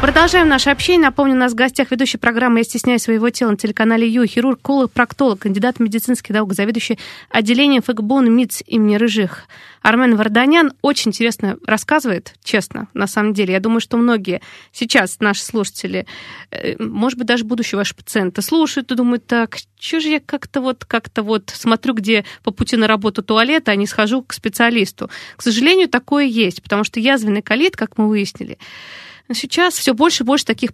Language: Russian